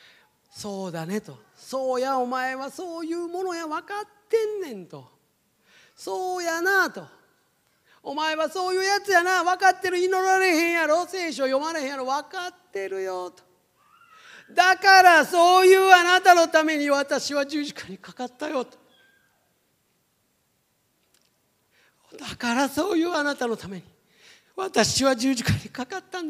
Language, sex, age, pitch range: Japanese, male, 40-59, 225-350 Hz